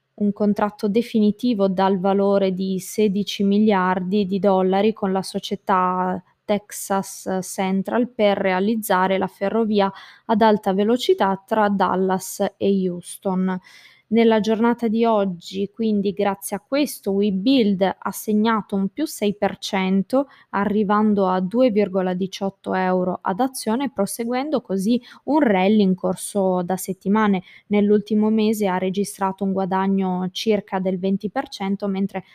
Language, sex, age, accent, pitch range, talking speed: Italian, female, 20-39, native, 190-215 Hz, 120 wpm